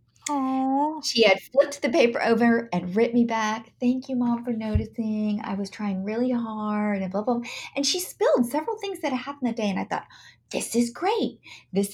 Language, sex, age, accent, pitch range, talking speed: English, female, 40-59, American, 175-240 Hz, 200 wpm